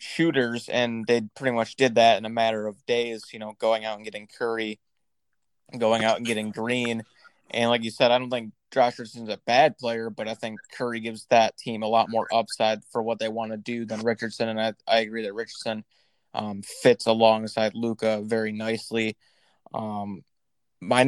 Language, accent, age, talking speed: English, American, 20-39, 195 wpm